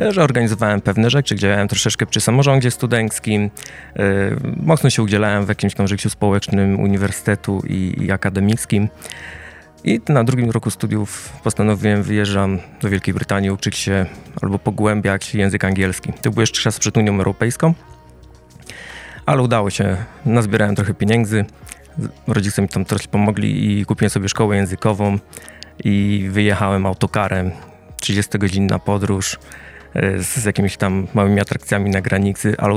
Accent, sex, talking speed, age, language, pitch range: native, male, 135 wpm, 20-39, Polish, 100-110 Hz